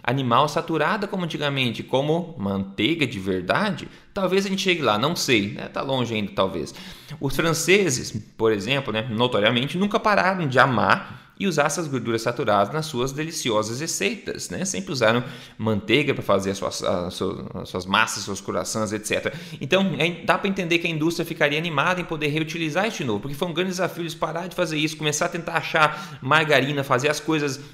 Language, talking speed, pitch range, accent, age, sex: Portuguese, 190 wpm, 120-170 Hz, Brazilian, 20-39, male